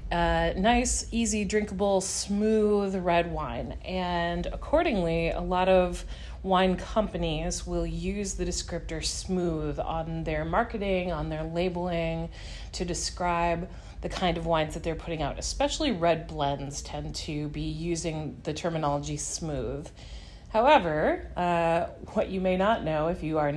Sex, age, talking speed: female, 30-49, 140 wpm